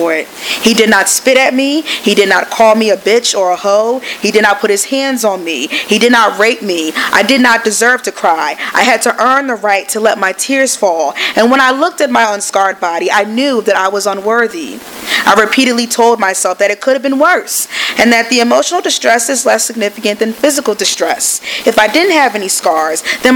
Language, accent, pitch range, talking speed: English, American, 205-260 Hz, 225 wpm